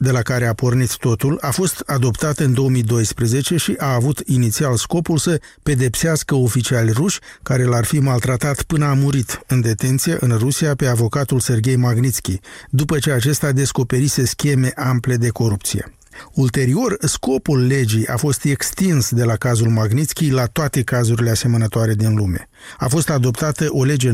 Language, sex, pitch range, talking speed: Romanian, male, 120-145 Hz, 160 wpm